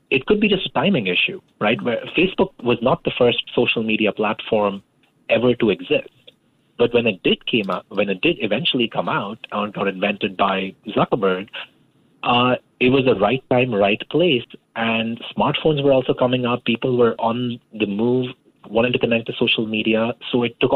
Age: 30-49